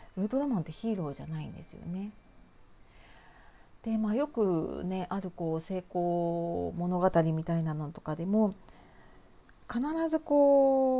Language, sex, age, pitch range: Japanese, female, 40-59, 160-210 Hz